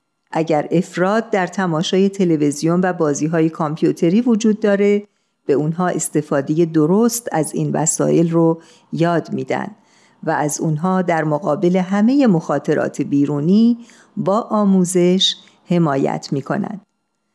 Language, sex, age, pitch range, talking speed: Persian, female, 50-69, 155-200 Hz, 115 wpm